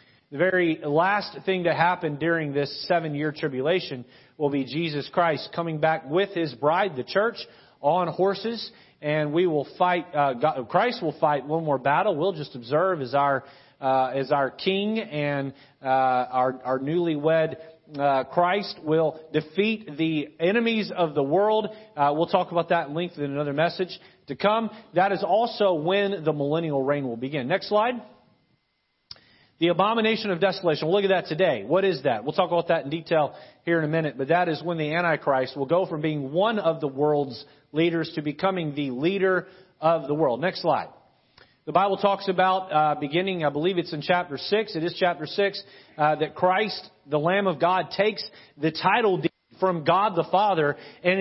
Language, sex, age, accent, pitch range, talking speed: English, male, 40-59, American, 145-185 Hz, 185 wpm